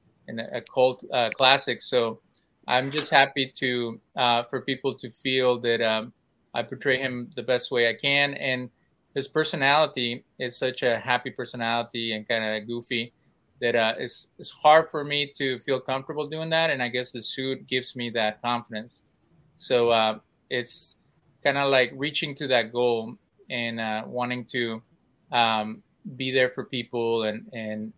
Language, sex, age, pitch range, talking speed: English, male, 20-39, 115-135 Hz, 170 wpm